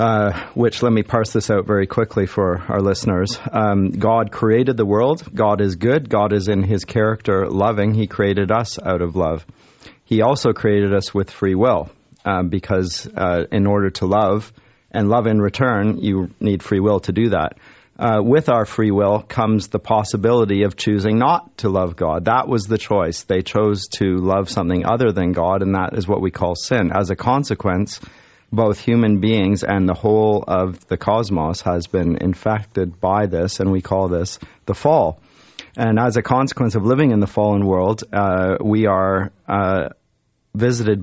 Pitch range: 95-110 Hz